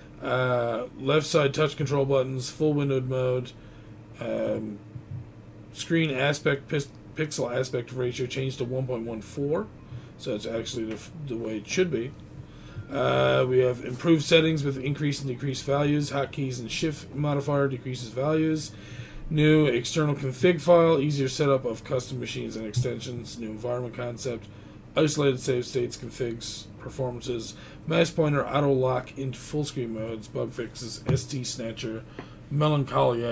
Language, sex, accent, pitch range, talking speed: English, male, American, 115-145 Hz, 135 wpm